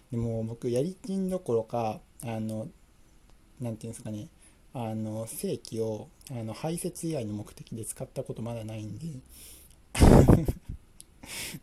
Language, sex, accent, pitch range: Japanese, male, native, 110-130 Hz